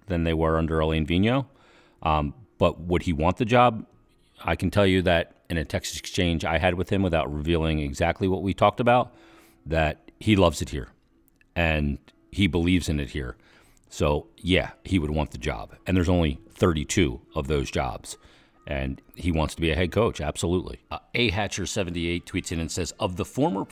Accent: American